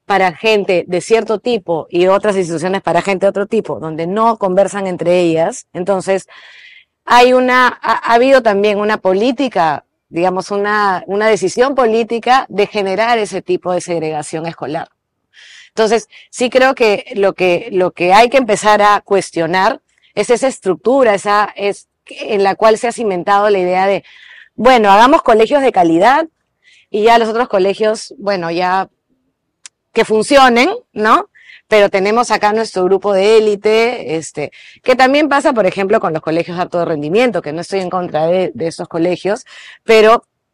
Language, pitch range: Spanish, 185-235 Hz